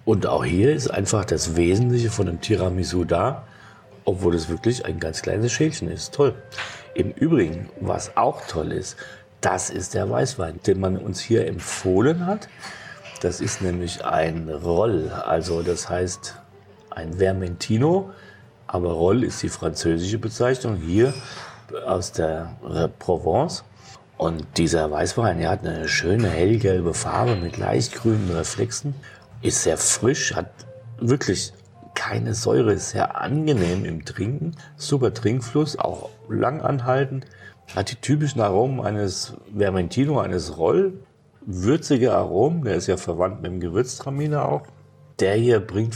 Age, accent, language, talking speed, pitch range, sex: 40-59, German, German, 140 wpm, 90-125 Hz, male